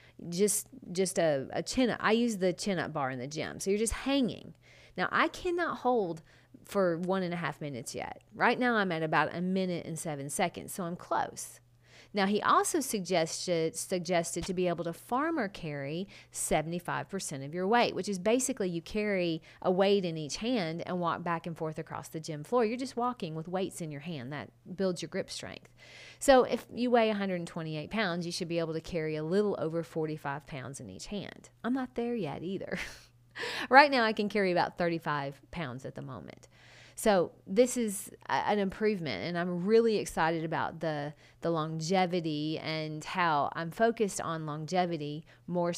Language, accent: English, American